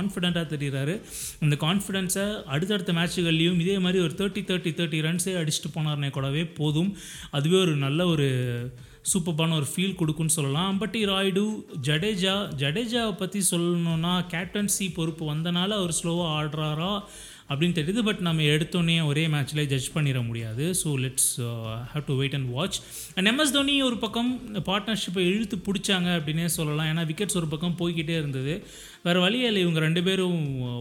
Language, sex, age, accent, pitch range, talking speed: Tamil, male, 30-49, native, 155-190 Hz, 150 wpm